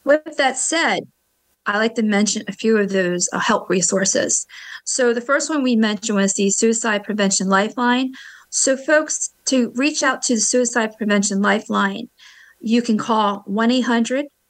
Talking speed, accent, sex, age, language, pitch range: 155 wpm, American, female, 40-59, English, 195-240 Hz